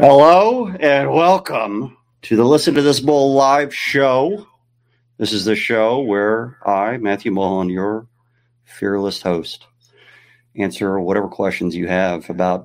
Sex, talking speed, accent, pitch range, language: male, 135 wpm, American, 100-125 Hz, English